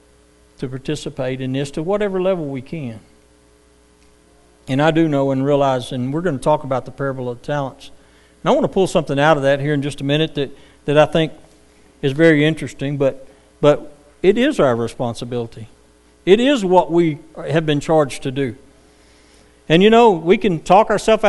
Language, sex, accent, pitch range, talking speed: English, male, American, 105-155 Hz, 195 wpm